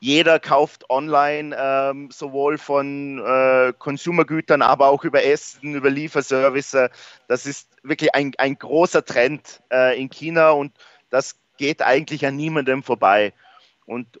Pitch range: 130-150 Hz